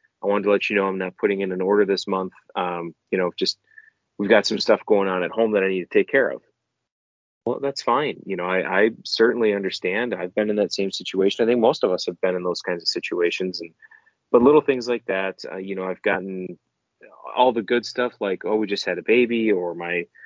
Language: English